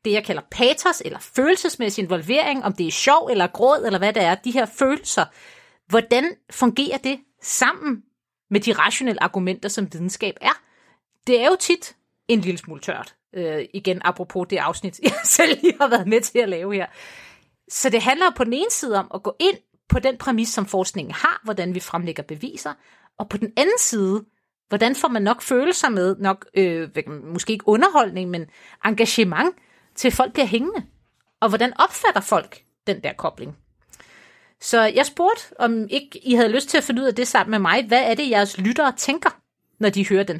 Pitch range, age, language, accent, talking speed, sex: 195-275 Hz, 30-49, Danish, native, 195 wpm, female